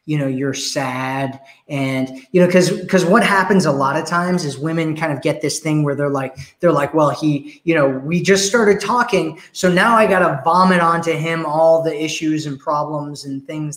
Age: 20-39